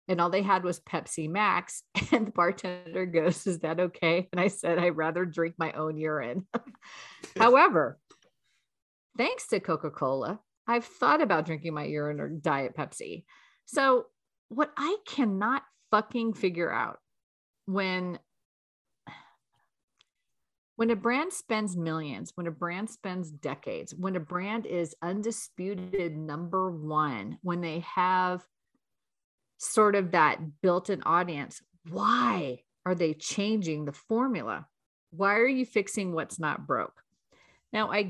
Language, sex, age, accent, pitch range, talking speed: English, female, 40-59, American, 155-195 Hz, 135 wpm